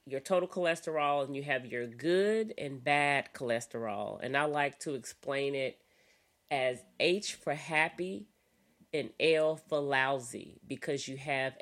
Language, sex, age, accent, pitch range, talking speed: English, female, 40-59, American, 130-170 Hz, 145 wpm